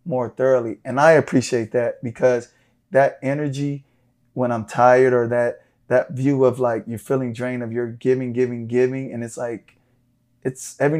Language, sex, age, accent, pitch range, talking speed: English, male, 20-39, American, 120-130 Hz, 170 wpm